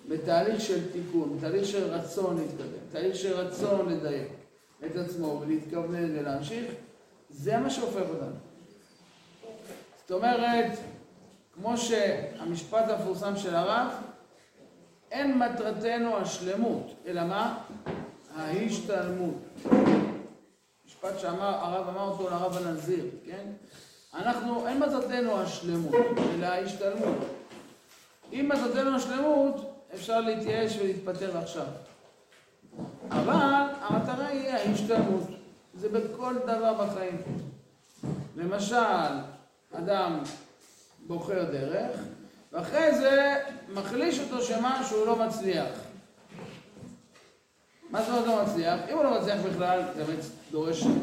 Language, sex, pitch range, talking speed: Hebrew, male, 180-240 Hz, 100 wpm